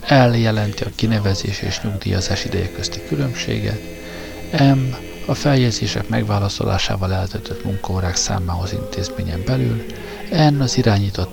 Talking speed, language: 105 wpm, Hungarian